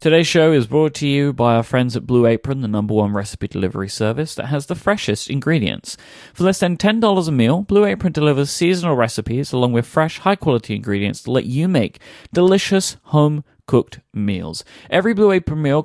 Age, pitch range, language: 30-49, 105-150 Hz, English